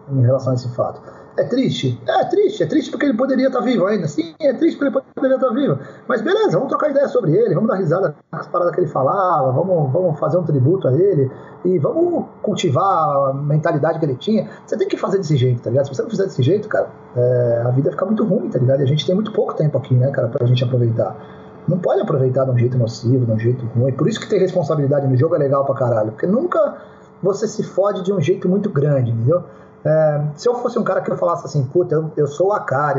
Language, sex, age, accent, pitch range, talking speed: Portuguese, male, 30-49, Brazilian, 135-190 Hz, 255 wpm